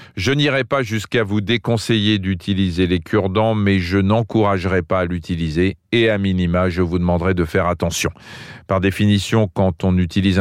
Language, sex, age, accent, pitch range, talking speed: French, male, 40-59, French, 90-120 Hz, 175 wpm